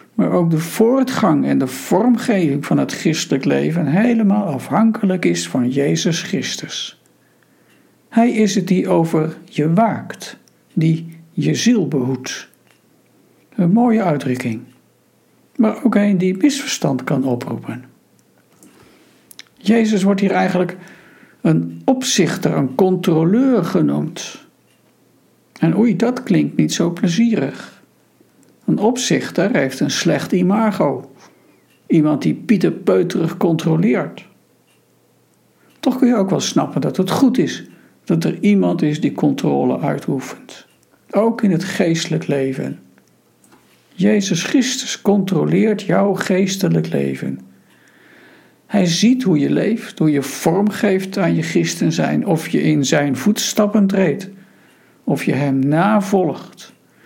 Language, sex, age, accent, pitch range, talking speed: Dutch, male, 60-79, Dutch, 155-210 Hz, 120 wpm